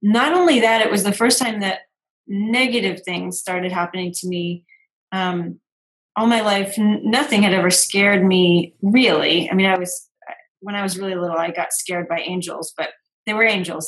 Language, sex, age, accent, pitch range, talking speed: English, female, 30-49, American, 180-210 Hz, 190 wpm